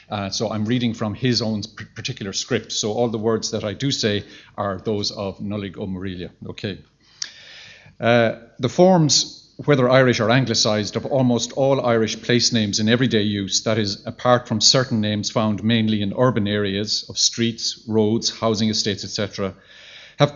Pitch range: 110-135 Hz